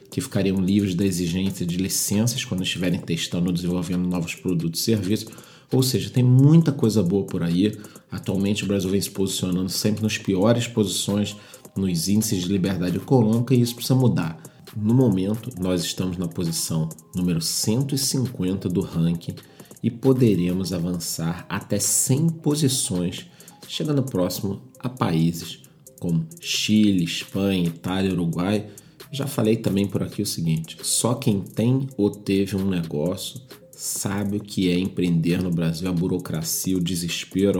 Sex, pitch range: male, 90-115 Hz